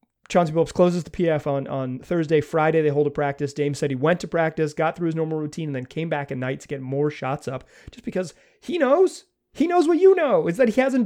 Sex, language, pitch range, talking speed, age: male, English, 140-185 Hz, 255 wpm, 30-49